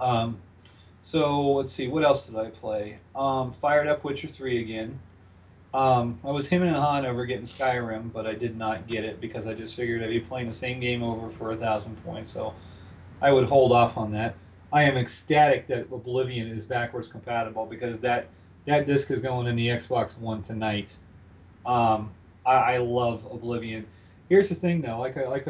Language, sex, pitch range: English, male, 110-140 Hz